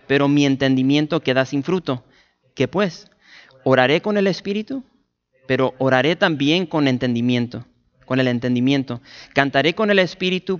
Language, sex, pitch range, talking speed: English, male, 125-175 Hz, 130 wpm